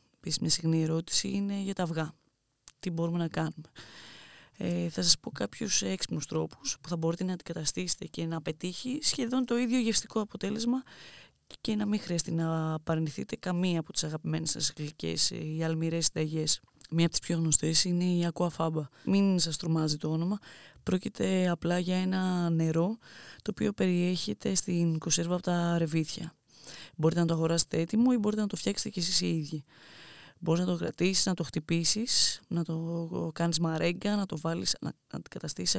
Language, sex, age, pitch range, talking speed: Greek, female, 20-39, 160-185 Hz, 175 wpm